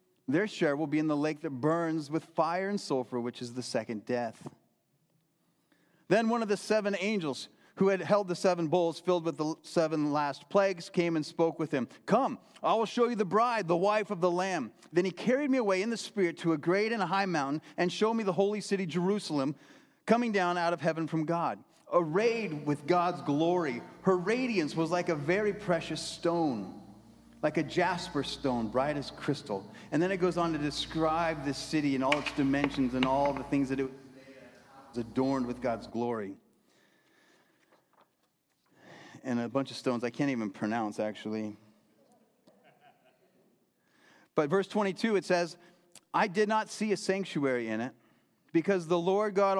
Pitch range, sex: 140-190 Hz, male